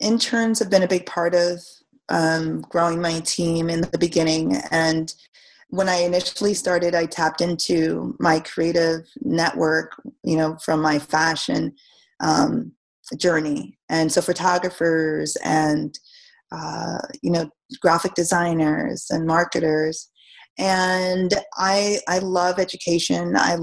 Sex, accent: female, American